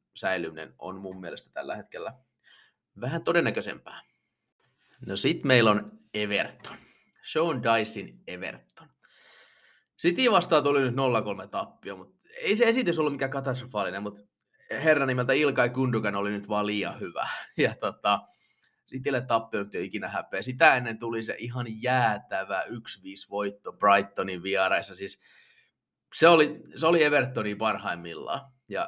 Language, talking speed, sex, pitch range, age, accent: Finnish, 130 wpm, male, 105-135 Hz, 30-49, native